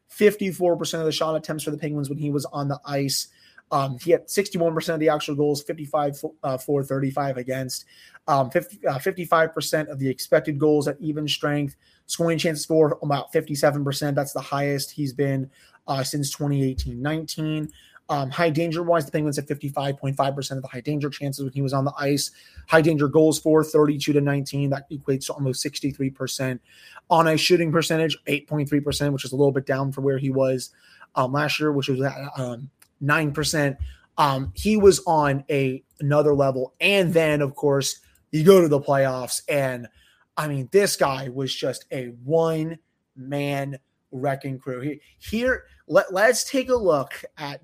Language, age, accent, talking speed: English, 20-39, American, 165 wpm